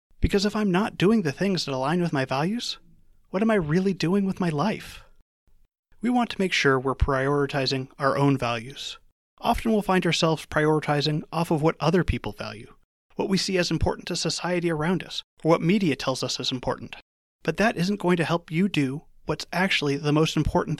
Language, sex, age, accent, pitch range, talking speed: English, male, 30-49, American, 140-185 Hz, 200 wpm